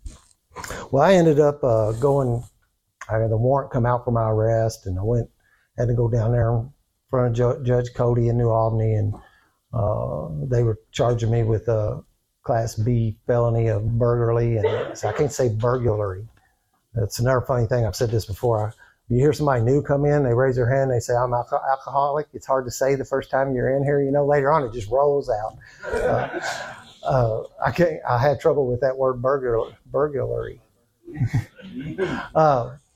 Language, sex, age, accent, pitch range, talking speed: English, male, 60-79, American, 115-145 Hz, 195 wpm